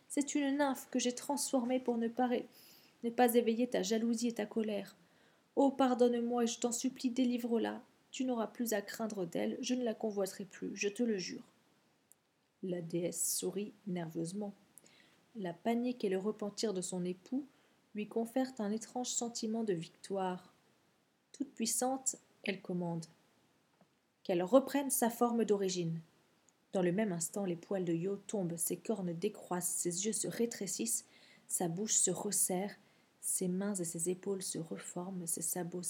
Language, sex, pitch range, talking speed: French, female, 180-235 Hz, 155 wpm